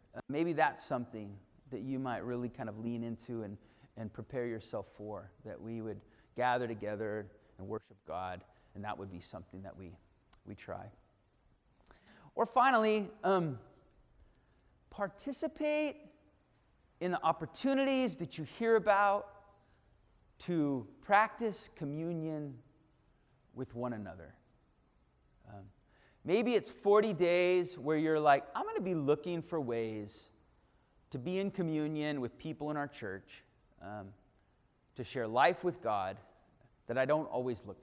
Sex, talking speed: male, 135 wpm